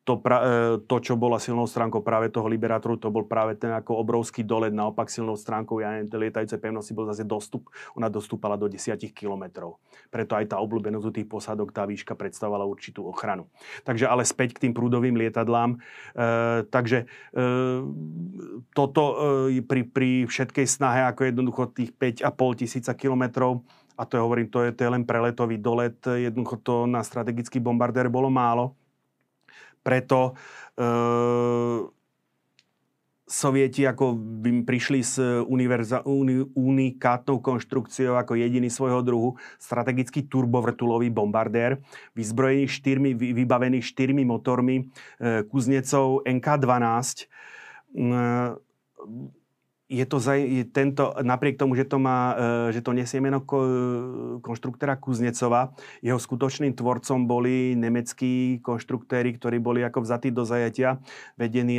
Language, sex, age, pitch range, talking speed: Slovak, male, 30-49, 115-130 Hz, 130 wpm